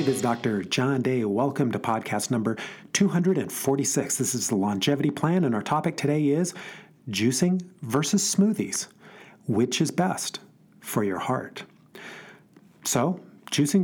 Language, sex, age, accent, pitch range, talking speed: English, male, 40-59, American, 125-185 Hz, 135 wpm